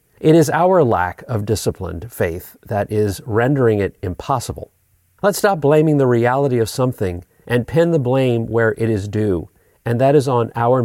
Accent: American